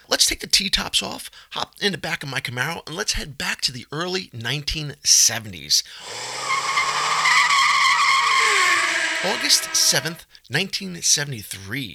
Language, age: English, 30-49